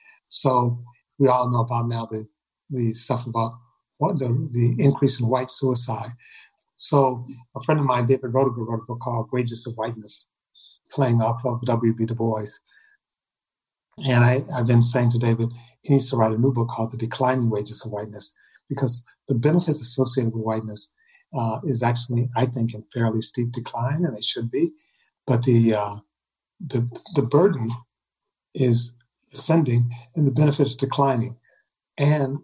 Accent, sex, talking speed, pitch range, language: American, male, 165 wpm, 120-140 Hz, English